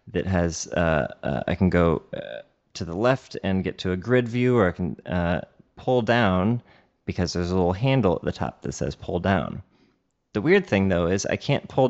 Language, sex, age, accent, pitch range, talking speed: English, male, 30-49, American, 90-115 Hz, 215 wpm